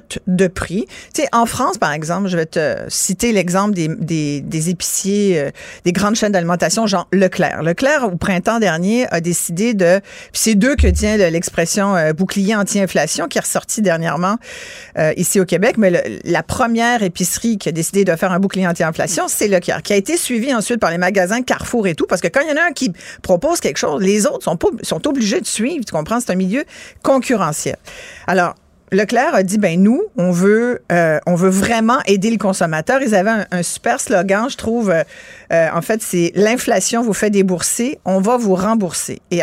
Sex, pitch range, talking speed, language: female, 180-230 Hz, 200 wpm, French